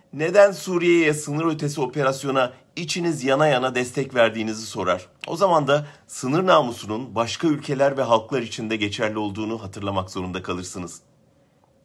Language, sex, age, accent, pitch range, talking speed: German, male, 40-59, Turkish, 105-145 Hz, 130 wpm